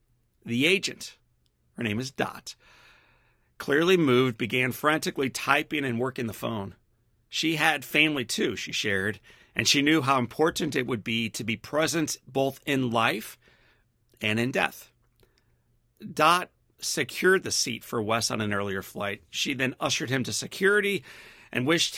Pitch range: 115-140 Hz